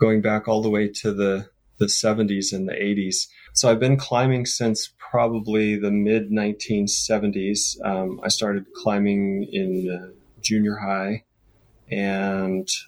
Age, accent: 30-49, American